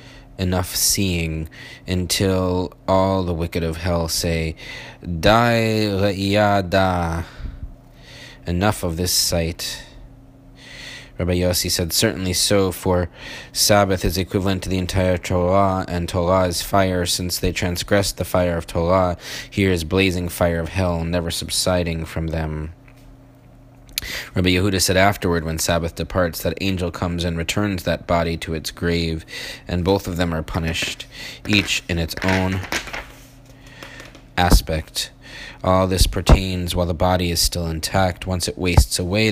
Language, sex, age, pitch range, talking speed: English, male, 20-39, 85-100 Hz, 135 wpm